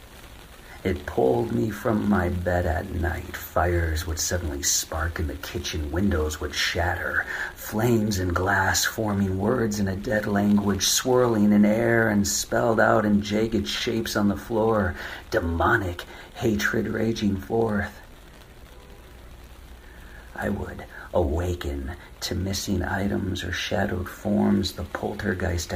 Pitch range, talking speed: 85-105 Hz, 125 wpm